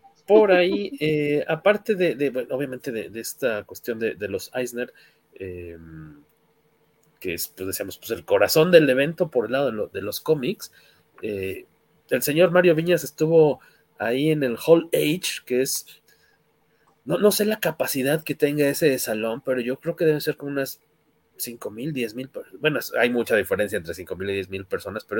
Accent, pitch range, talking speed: Mexican, 120-165 Hz, 190 wpm